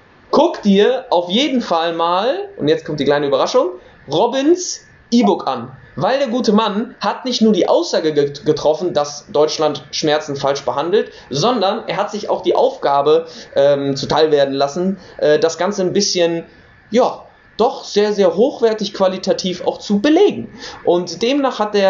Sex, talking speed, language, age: male, 160 wpm, German, 20-39